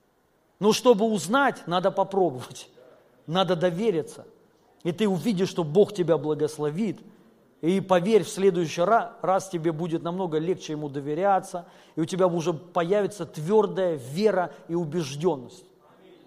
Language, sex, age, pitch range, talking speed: Russian, male, 40-59, 165-215 Hz, 130 wpm